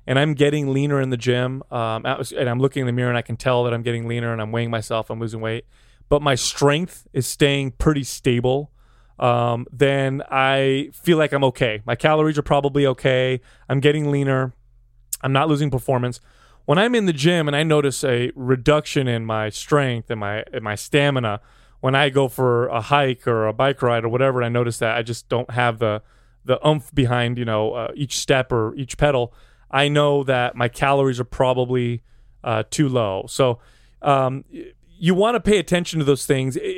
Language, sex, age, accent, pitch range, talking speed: English, male, 20-39, American, 120-145 Hz, 205 wpm